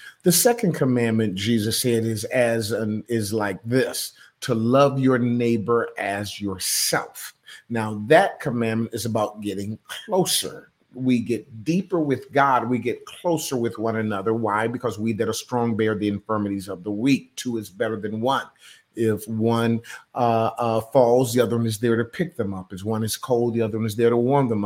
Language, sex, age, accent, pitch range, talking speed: English, male, 30-49, American, 110-125 Hz, 190 wpm